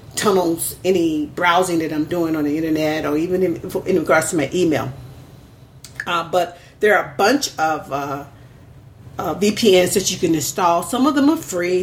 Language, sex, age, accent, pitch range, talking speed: English, female, 40-59, American, 145-185 Hz, 185 wpm